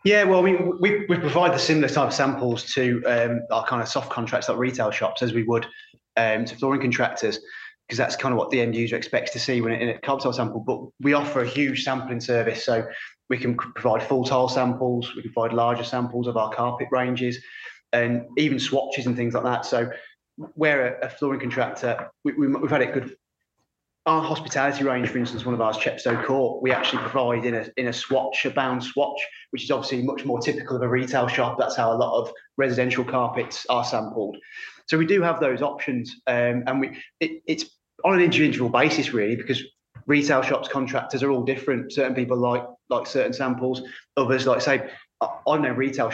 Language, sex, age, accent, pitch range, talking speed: English, male, 20-39, British, 120-140 Hz, 210 wpm